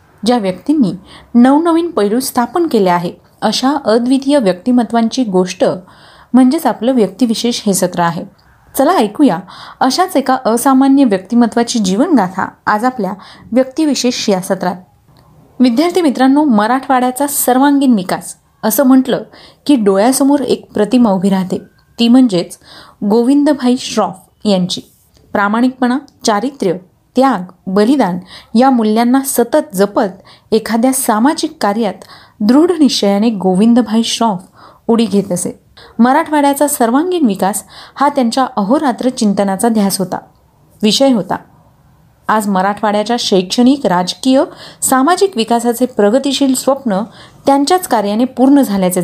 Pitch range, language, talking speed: 195-265 Hz, Marathi, 105 wpm